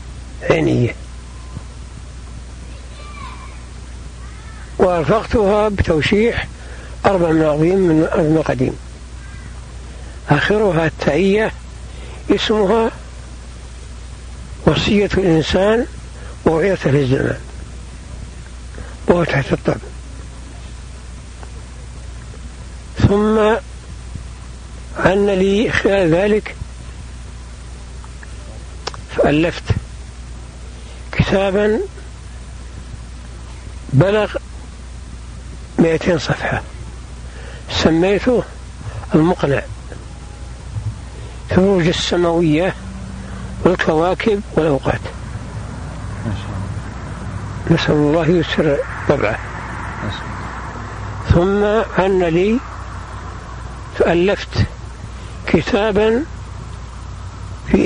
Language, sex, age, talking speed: Arabic, male, 60-79, 50 wpm